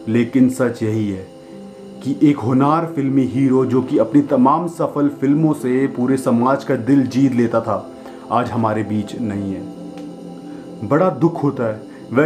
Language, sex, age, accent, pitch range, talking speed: Hindi, male, 30-49, native, 110-140 Hz, 160 wpm